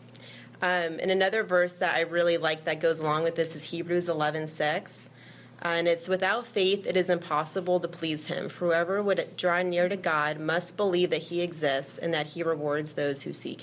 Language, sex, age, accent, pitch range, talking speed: English, female, 30-49, American, 145-175 Hz, 205 wpm